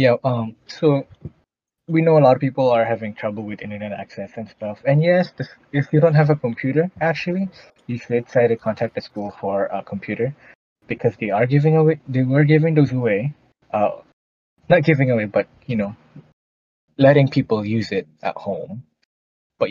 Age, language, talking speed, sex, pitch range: 20-39, English, 185 wpm, male, 105-145 Hz